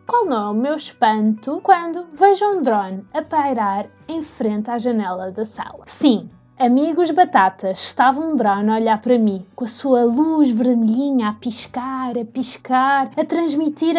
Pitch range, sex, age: 225-300 Hz, female, 20-39